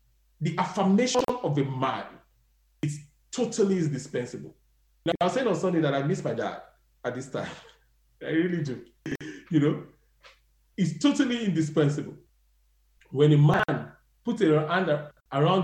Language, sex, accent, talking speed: English, male, Nigerian, 140 wpm